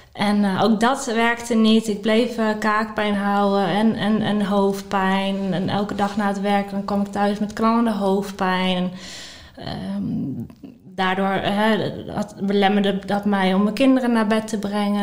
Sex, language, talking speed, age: female, Dutch, 160 wpm, 20-39